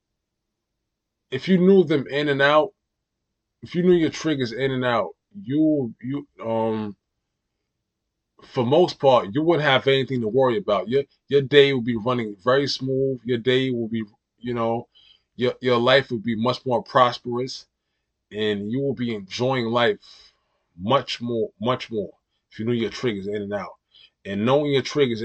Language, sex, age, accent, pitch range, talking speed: English, male, 20-39, American, 110-140 Hz, 170 wpm